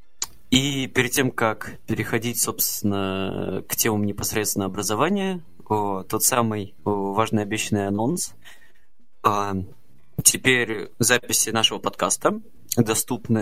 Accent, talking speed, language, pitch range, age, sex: native, 105 wpm, Russian, 105-130 Hz, 20-39, male